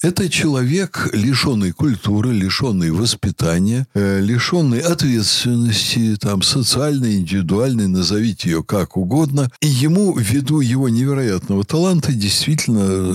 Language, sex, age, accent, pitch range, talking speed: Russian, male, 60-79, native, 95-145 Hz, 105 wpm